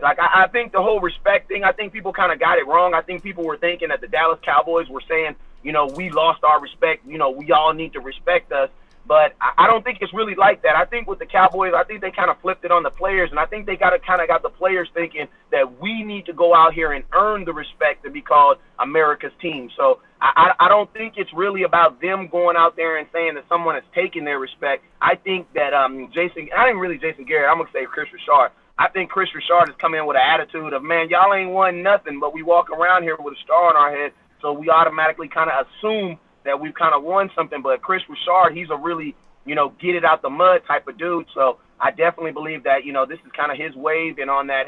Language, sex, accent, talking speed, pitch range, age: English, male, American, 265 wpm, 150-190 Hz, 30-49